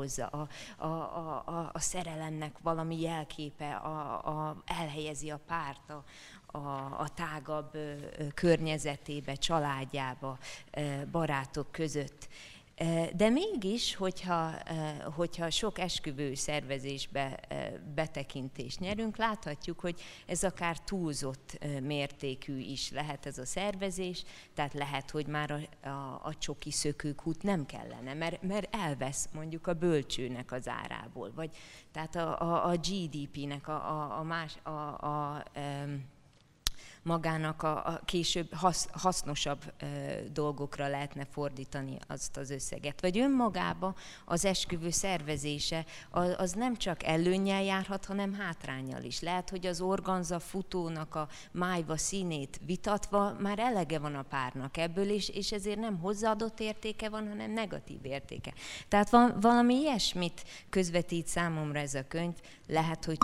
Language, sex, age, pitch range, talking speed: Hungarian, female, 30-49, 145-180 Hz, 125 wpm